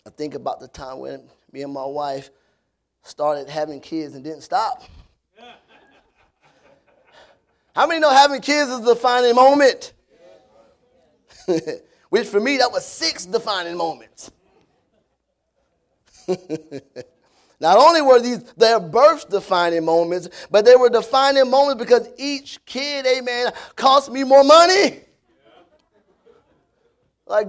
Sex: male